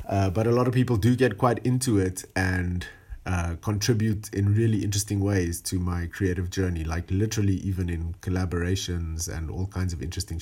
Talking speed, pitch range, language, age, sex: 185 wpm, 95-110 Hz, English, 30-49, male